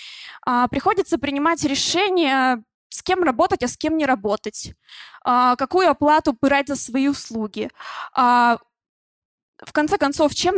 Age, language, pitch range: 20-39, Russian, 245-305 Hz